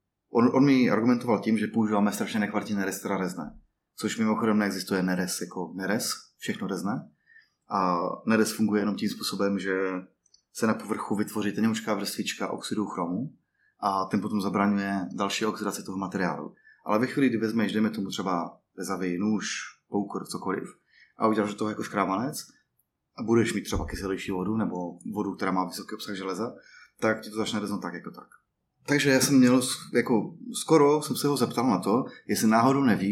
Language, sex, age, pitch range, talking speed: Czech, male, 20-39, 100-125 Hz, 175 wpm